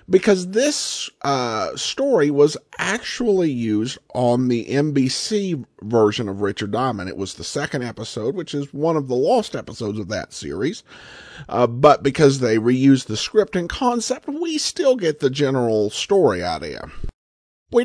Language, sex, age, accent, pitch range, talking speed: English, male, 50-69, American, 110-180 Hz, 155 wpm